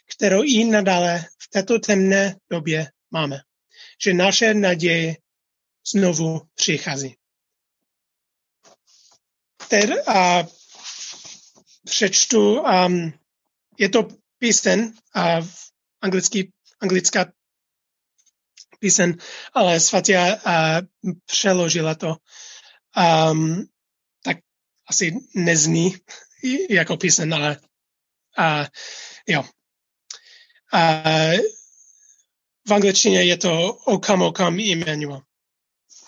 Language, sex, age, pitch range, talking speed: Czech, male, 30-49, 170-225 Hz, 75 wpm